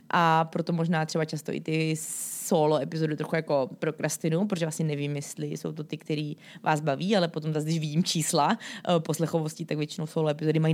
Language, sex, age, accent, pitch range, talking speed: Czech, female, 20-39, native, 160-195 Hz, 185 wpm